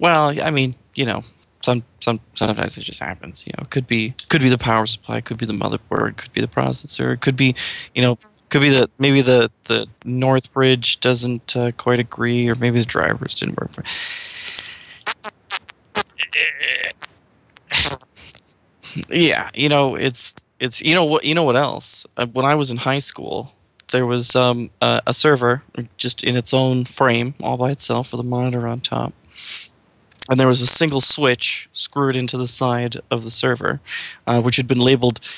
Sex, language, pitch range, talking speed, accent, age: male, English, 115-135 Hz, 185 wpm, American, 20-39